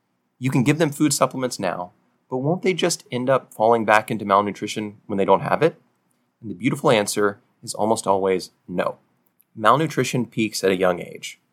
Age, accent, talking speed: 30-49, American, 185 wpm